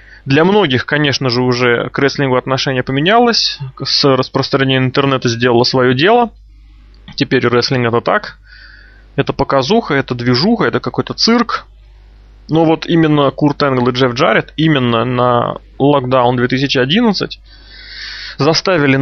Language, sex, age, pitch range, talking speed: Russian, male, 20-39, 130-155 Hz, 125 wpm